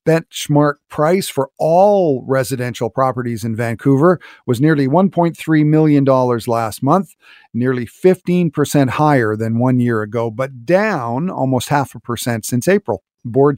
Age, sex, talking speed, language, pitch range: 50-69, male, 135 wpm, English, 120-160 Hz